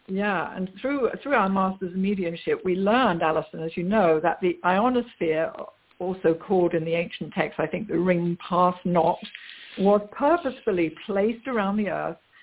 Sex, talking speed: female, 165 wpm